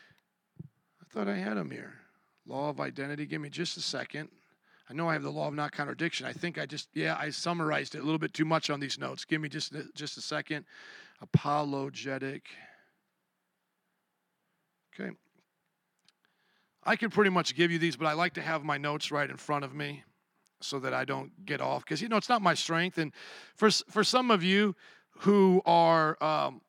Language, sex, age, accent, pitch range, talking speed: English, male, 40-59, American, 160-210 Hz, 195 wpm